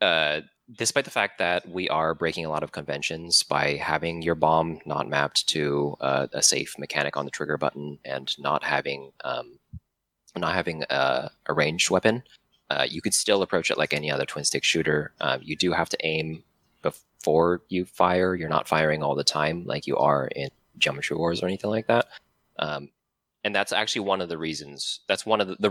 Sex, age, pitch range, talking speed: male, 20-39, 75-95 Hz, 200 wpm